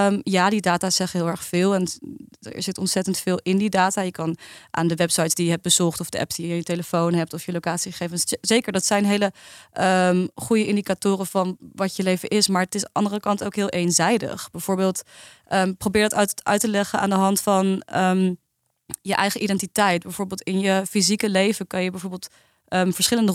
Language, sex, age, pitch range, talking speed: Dutch, female, 20-39, 180-205 Hz, 215 wpm